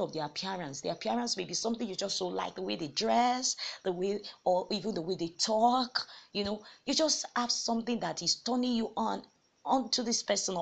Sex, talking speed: female, 210 wpm